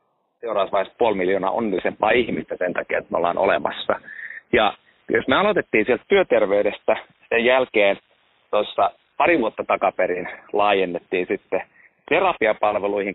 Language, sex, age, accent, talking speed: Finnish, male, 30-49, native, 120 wpm